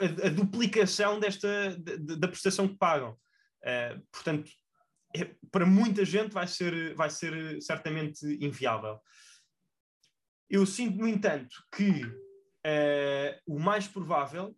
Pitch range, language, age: 135-175 Hz, Portuguese, 20-39